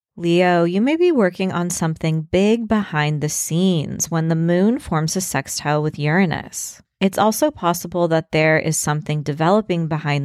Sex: female